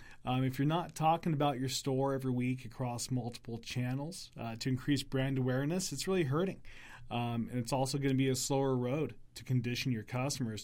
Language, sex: English, male